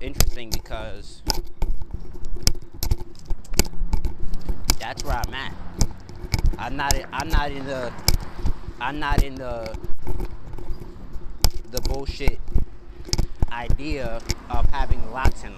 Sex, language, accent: male, English, American